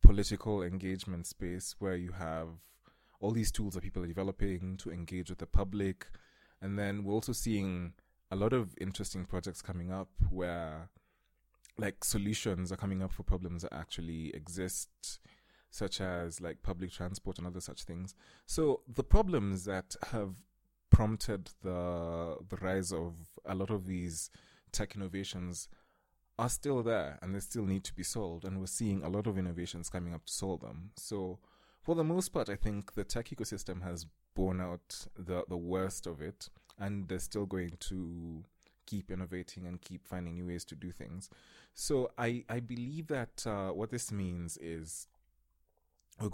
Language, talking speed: English, 170 wpm